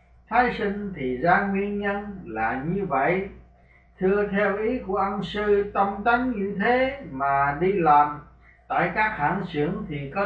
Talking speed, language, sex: 165 wpm, Vietnamese, male